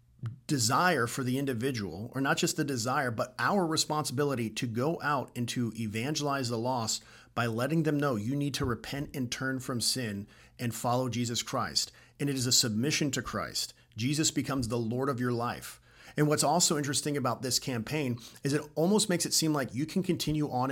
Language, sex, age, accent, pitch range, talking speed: English, male, 40-59, American, 120-150 Hz, 195 wpm